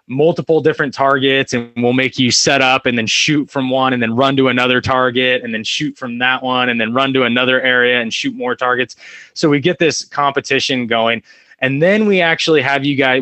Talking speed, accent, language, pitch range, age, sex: 220 wpm, American, English, 125-140 Hz, 20-39, male